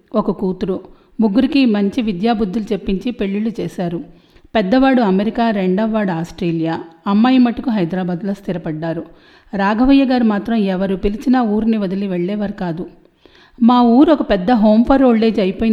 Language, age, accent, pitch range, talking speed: English, 40-59, Indian, 190-230 Hz, 155 wpm